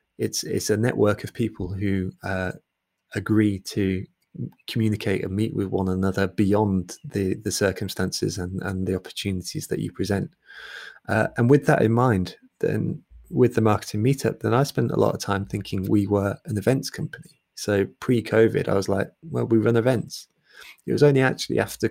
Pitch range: 100-115 Hz